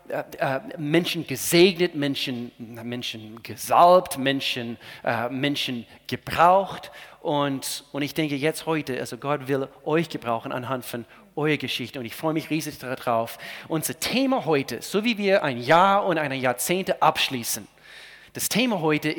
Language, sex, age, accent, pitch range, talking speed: German, male, 40-59, German, 130-180 Hz, 140 wpm